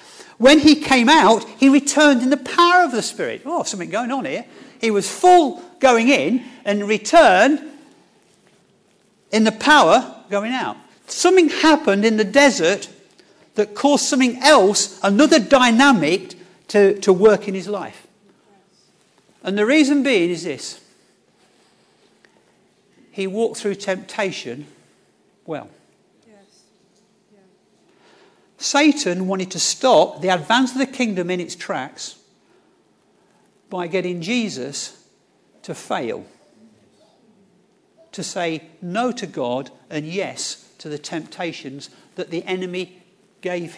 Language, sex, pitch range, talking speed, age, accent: English, male, 195-280 Hz, 120 wpm, 50-69, British